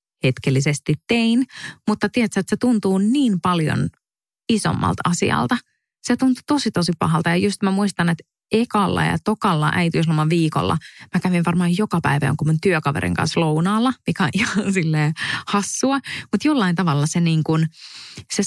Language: Finnish